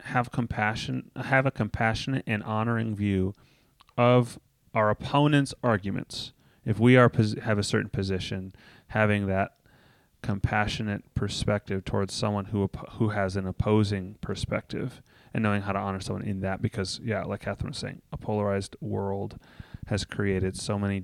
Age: 30-49